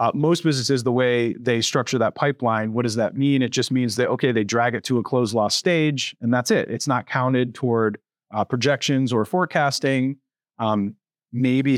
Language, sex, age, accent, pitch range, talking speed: English, male, 30-49, American, 115-140 Hz, 200 wpm